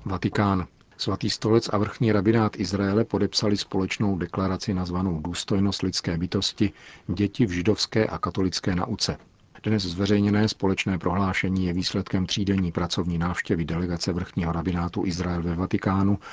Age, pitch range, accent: 40-59, 85-100 Hz, native